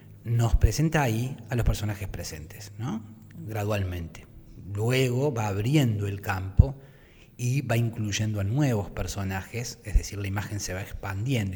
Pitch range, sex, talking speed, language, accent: 100-120 Hz, male, 140 wpm, Spanish, Argentinian